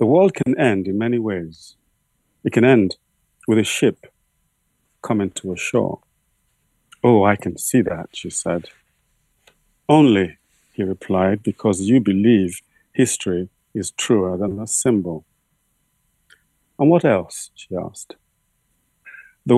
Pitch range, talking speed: 95-120 Hz, 130 wpm